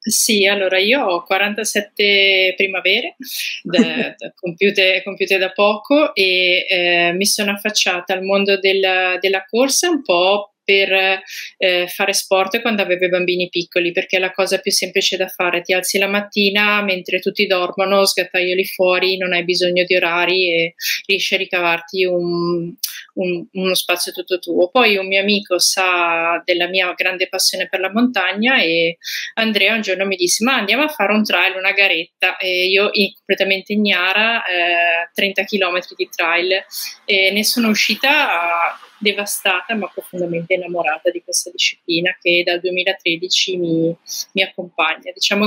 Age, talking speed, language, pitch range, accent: 30-49, 150 wpm, Italian, 180-205 Hz, native